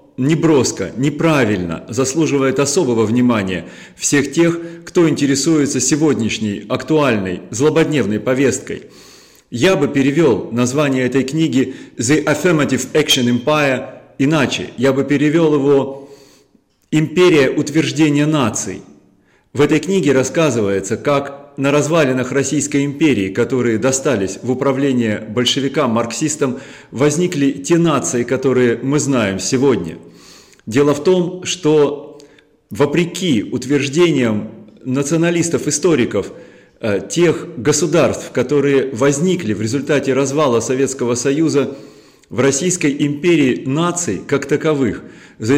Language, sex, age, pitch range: Russian, male, 30-49, 125-155 Hz